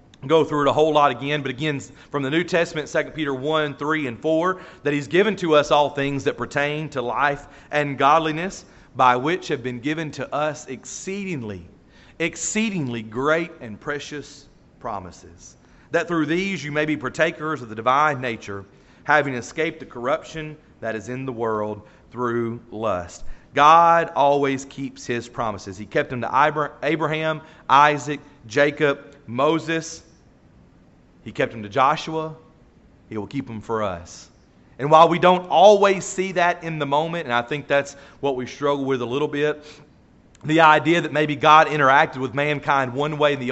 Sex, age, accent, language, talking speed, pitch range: male, 40-59, American, English, 170 wpm, 125-155 Hz